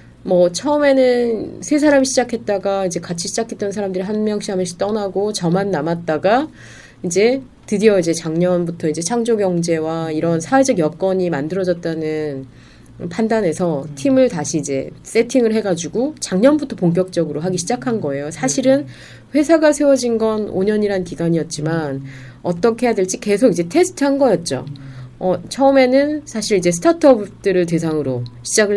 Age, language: 20-39, Korean